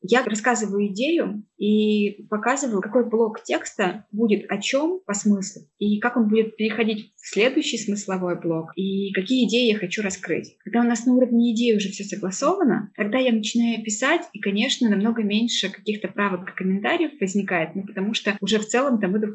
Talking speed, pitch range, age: 185 wpm, 195-230 Hz, 20-39